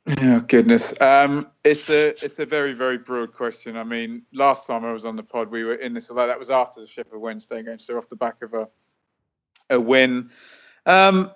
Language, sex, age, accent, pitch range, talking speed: English, male, 30-49, British, 115-130 Hz, 225 wpm